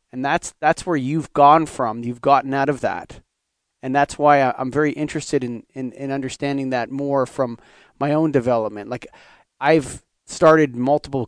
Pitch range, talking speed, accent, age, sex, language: 130-155 Hz, 170 wpm, American, 30-49, male, English